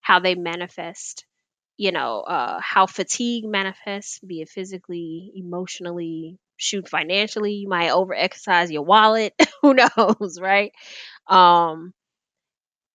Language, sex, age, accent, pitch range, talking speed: English, female, 20-39, American, 180-225 Hz, 110 wpm